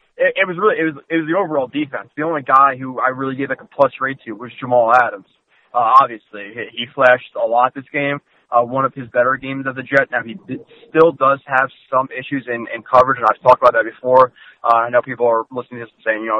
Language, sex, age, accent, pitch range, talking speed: English, male, 20-39, American, 120-140 Hz, 265 wpm